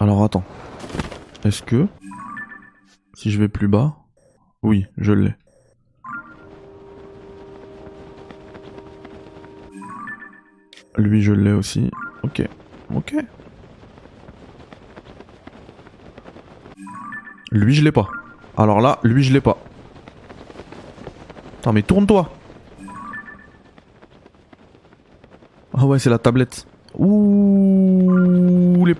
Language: French